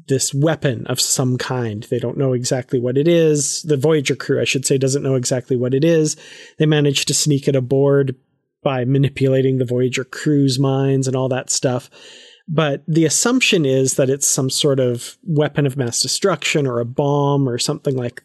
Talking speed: 195 wpm